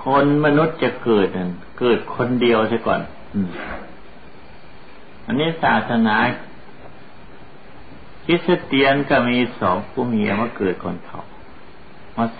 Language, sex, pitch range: Thai, male, 100-135 Hz